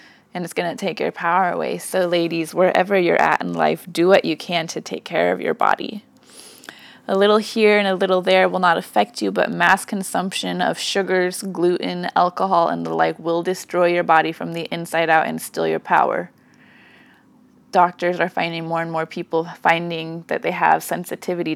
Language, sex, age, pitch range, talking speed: English, female, 20-39, 170-195 Hz, 195 wpm